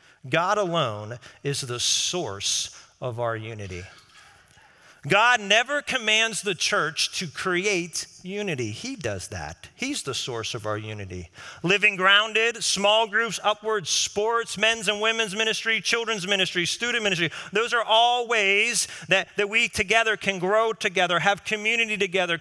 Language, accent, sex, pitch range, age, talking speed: English, American, male, 140-220 Hz, 40-59, 140 wpm